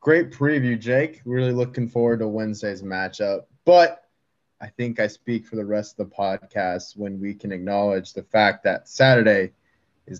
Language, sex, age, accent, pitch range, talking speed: English, male, 20-39, American, 105-130 Hz, 170 wpm